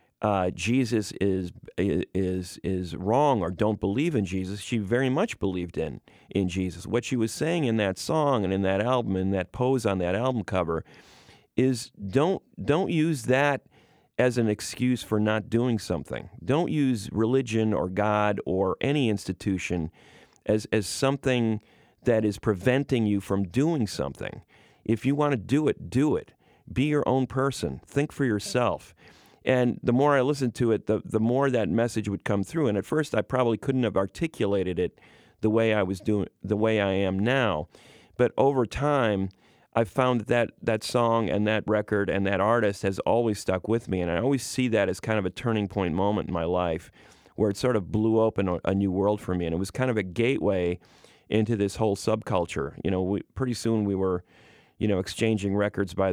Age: 40-59